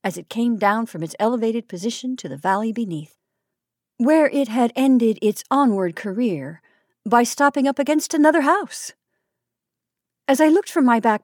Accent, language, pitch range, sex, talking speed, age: American, English, 205-275 Hz, female, 165 wpm, 50-69